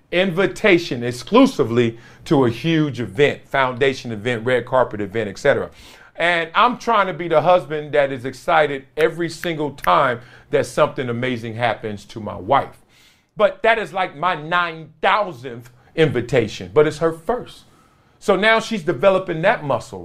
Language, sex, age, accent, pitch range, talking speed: English, male, 40-59, American, 130-215 Hz, 150 wpm